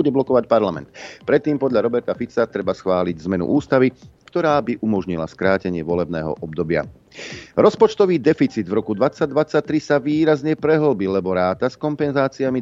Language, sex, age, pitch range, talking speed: Slovak, male, 40-59, 90-130 Hz, 145 wpm